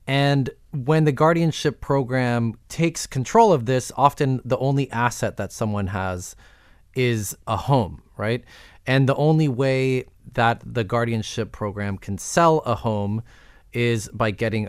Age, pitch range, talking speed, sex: 20-39, 100-135 Hz, 145 wpm, male